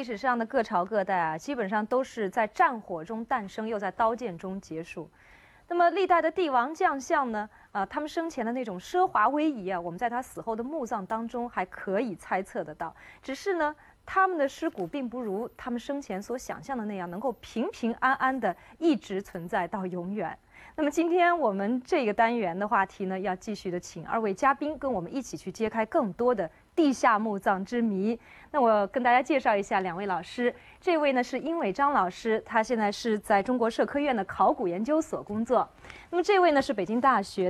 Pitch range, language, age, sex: 200-275 Hz, Chinese, 30-49, female